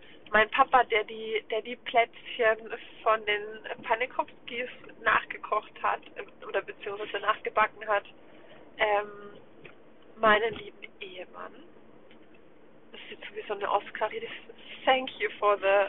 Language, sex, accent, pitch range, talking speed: German, female, German, 215-265 Hz, 115 wpm